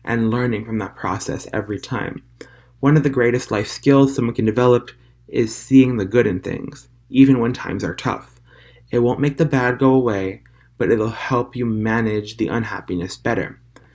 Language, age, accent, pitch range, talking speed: English, 20-39, American, 115-135 Hz, 180 wpm